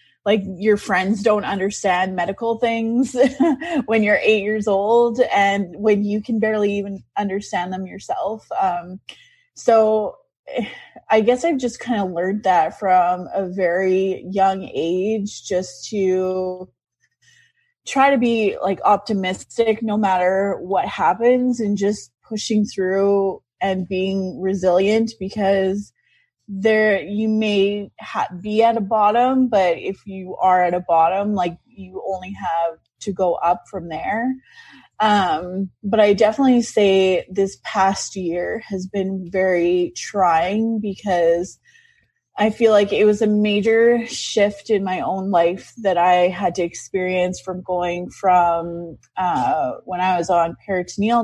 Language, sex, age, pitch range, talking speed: English, female, 20-39, 185-220 Hz, 140 wpm